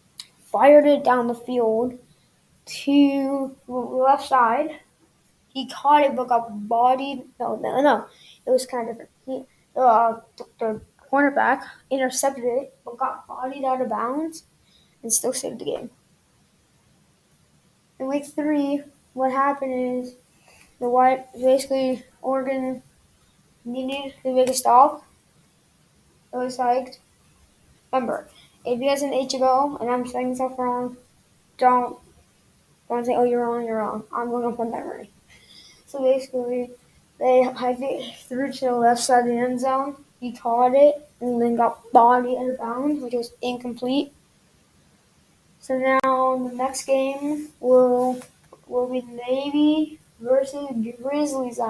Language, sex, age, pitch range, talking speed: English, female, 10-29, 245-270 Hz, 135 wpm